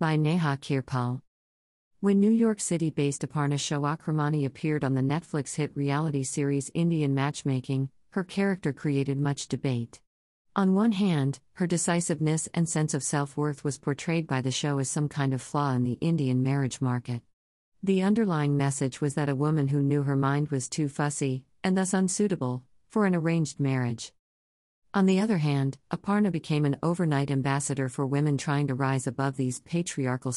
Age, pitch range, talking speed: 50-69, 130-165 Hz, 170 wpm